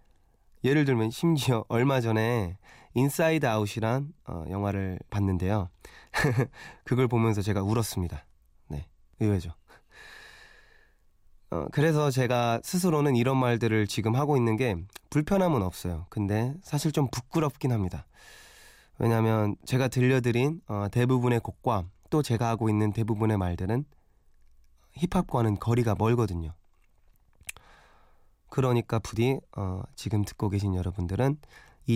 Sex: male